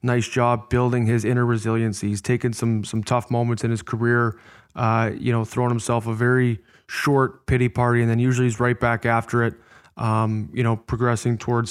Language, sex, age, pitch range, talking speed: English, male, 20-39, 115-130 Hz, 195 wpm